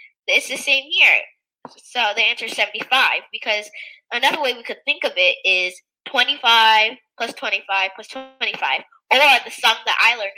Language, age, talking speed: English, 20-39, 170 wpm